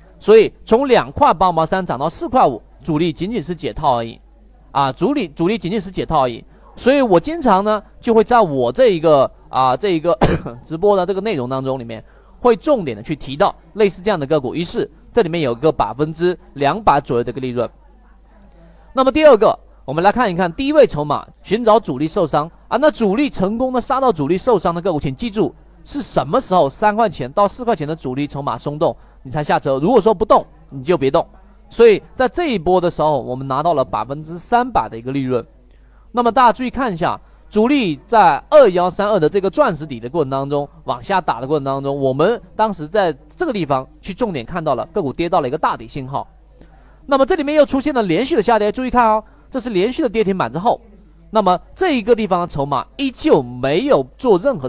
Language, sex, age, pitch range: Chinese, male, 30-49, 150-235 Hz